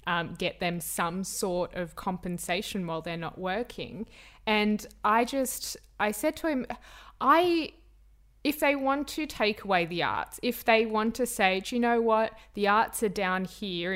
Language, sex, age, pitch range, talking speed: English, female, 20-39, 180-245 Hz, 175 wpm